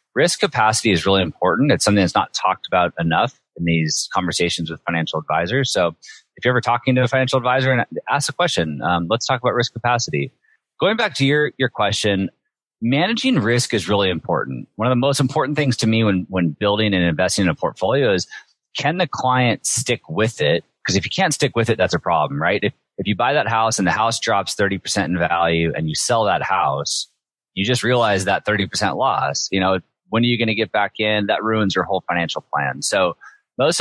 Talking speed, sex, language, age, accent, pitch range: 220 wpm, male, English, 30-49, American, 95-130 Hz